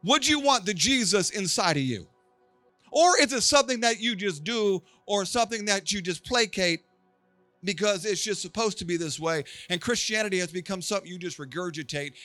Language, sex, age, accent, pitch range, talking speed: English, male, 40-59, American, 155-210 Hz, 185 wpm